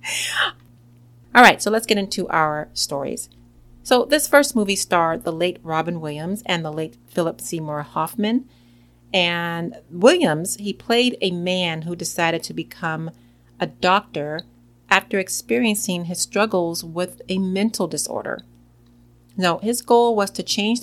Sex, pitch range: female, 145-210 Hz